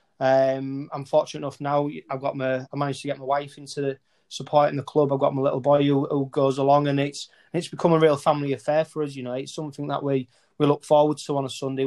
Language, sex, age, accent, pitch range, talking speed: English, male, 20-39, British, 135-150 Hz, 260 wpm